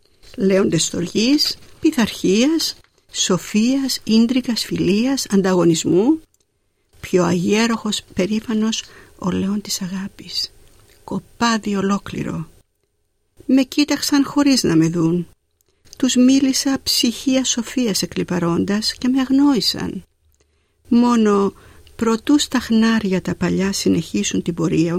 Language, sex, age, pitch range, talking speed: Greek, female, 50-69, 175-245 Hz, 95 wpm